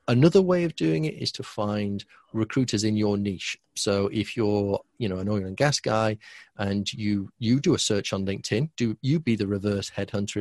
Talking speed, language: 210 wpm, English